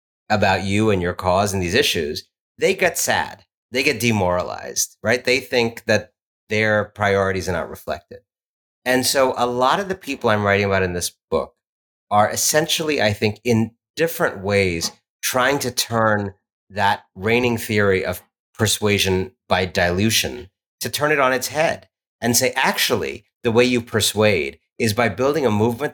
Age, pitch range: 30-49, 100-125 Hz